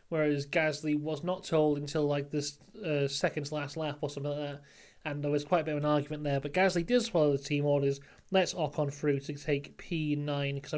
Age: 30-49